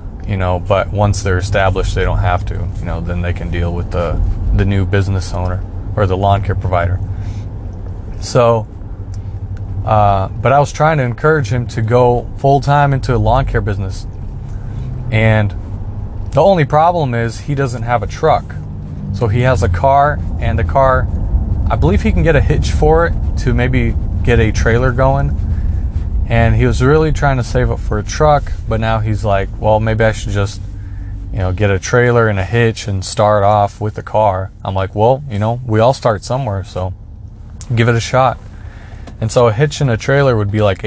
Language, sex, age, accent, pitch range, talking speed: English, male, 30-49, American, 95-115 Hz, 200 wpm